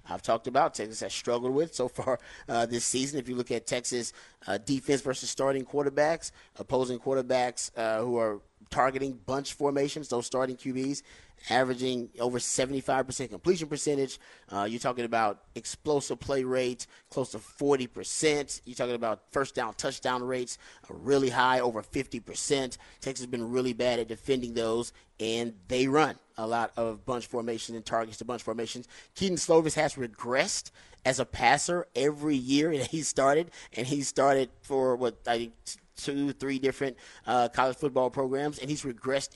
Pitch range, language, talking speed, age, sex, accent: 120-135 Hz, English, 165 wpm, 30-49, male, American